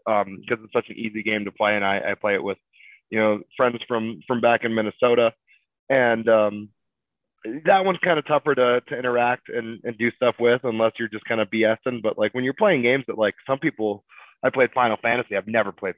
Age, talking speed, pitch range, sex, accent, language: 20-39, 230 wpm, 110-125 Hz, male, American, English